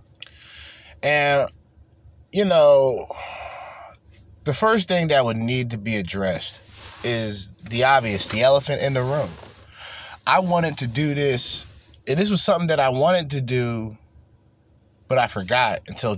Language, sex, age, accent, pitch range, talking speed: English, male, 20-39, American, 95-125 Hz, 140 wpm